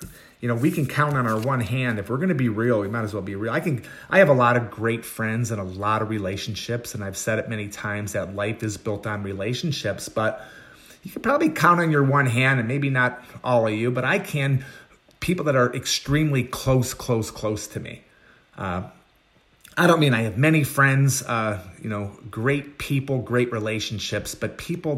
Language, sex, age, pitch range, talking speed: English, male, 30-49, 110-135 Hz, 220 wpm